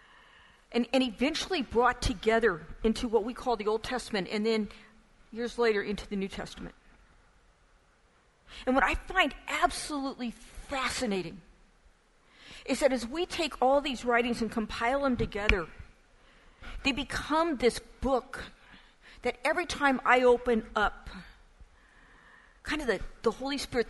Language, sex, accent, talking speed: English, female, American, 135 wpm